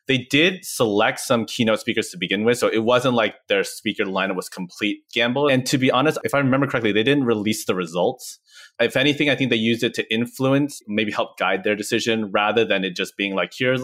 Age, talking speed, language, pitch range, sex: 20-39, 230 wpm, English, 110-145 Hz, male